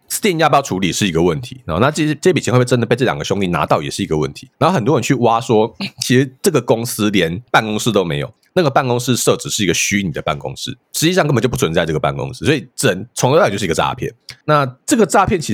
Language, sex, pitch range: Chinese, male, 110-150 Hz